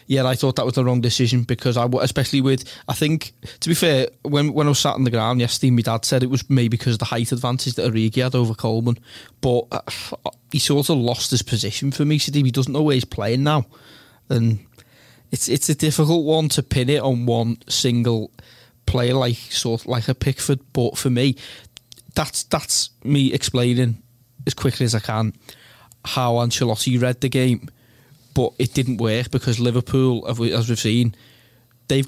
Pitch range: 120-135 Hz